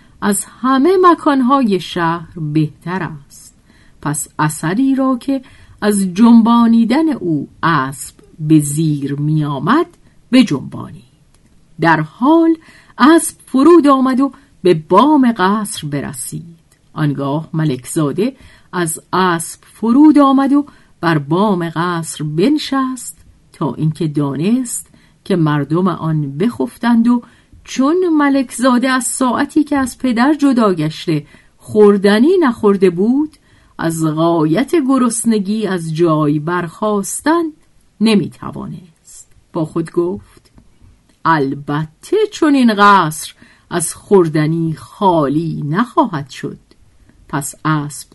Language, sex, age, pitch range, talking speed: Persian, female, 50-69, 155-255 Hz, 100 wpm